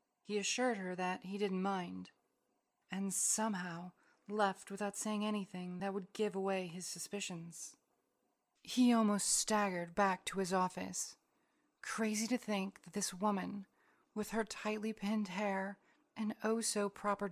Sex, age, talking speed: female, 30-49, 135 wpm